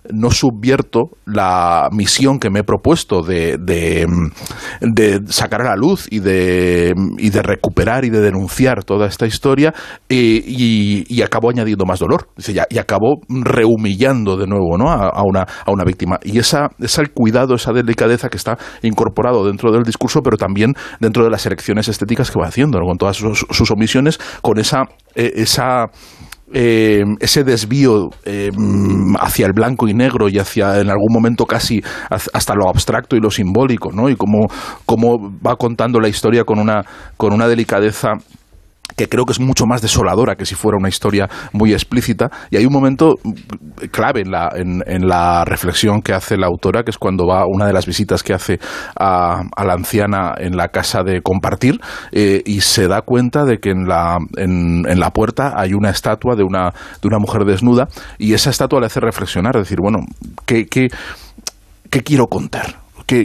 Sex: male